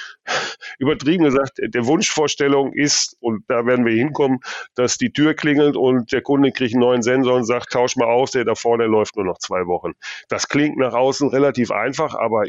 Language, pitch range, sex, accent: German, 110-135 Hz, male, German